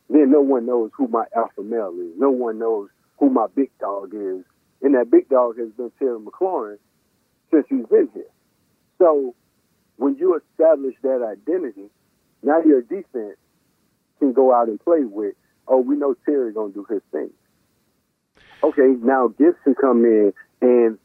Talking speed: 170 wpm